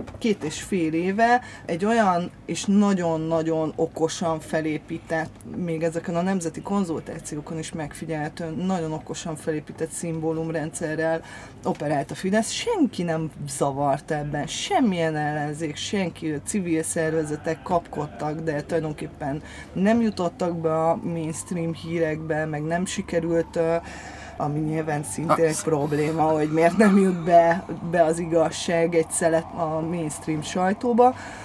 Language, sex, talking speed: Hungarian, female, 120 wpm